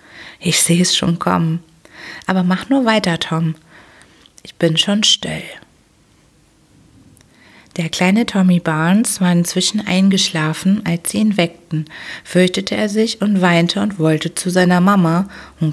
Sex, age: female, 30-49